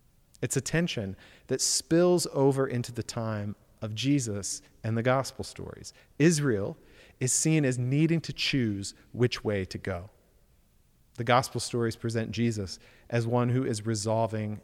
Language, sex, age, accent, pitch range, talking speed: English, male, 40-59, American, 105-135 Hz, 150 wpm